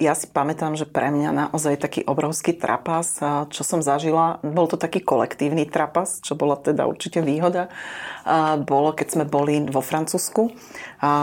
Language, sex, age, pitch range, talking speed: Slovak, female, 30-49, 145-170 Hz, 165 wpm